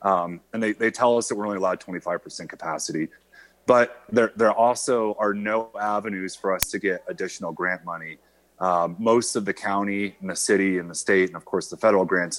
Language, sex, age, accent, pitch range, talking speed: English, male, 30-49, American, 95-120 Hz, 210 wpm